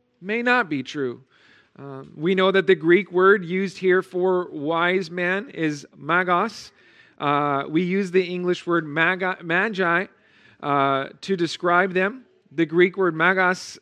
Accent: American